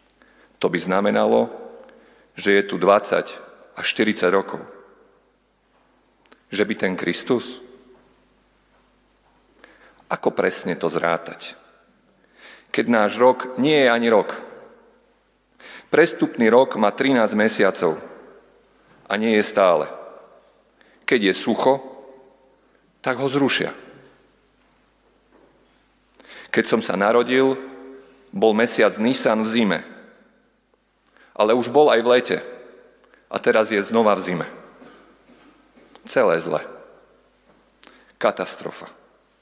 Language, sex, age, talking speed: Slovak, male, 40-59, 95 wpm